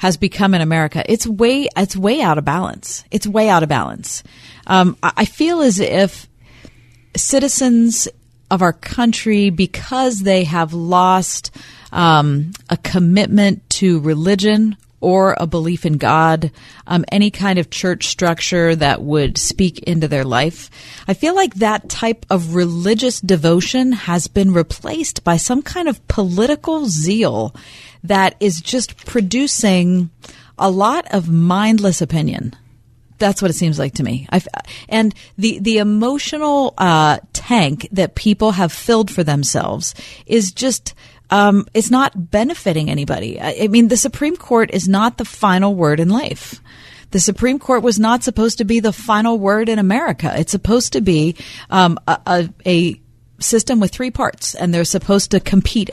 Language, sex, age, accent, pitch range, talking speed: English, female, 40-59, American, 160-220 Hz, 155 wpm